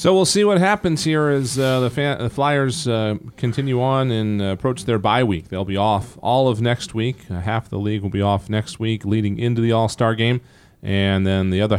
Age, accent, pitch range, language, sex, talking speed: 40-59, American, 95-125 Hz, English, male, 235 wpm